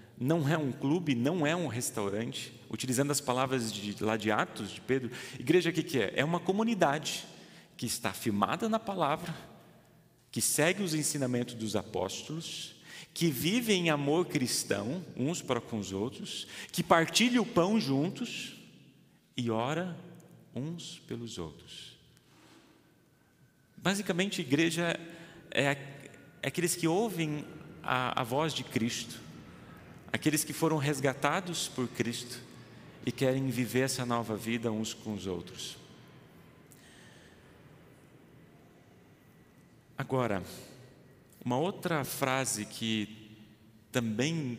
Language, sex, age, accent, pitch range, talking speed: Portuguese, male, 40-59, Brazilian, 115-160 Hz, 120 wpm